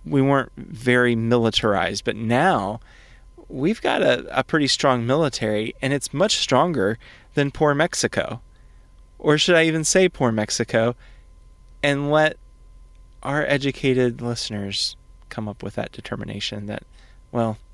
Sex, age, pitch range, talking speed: male, 30-49, 105-130 Hz, 130 wpm